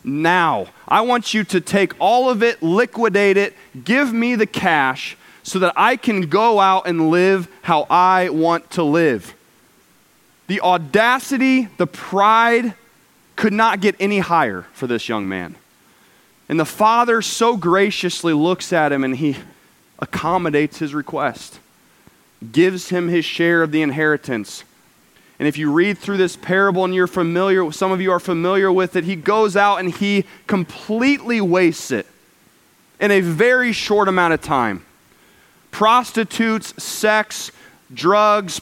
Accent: American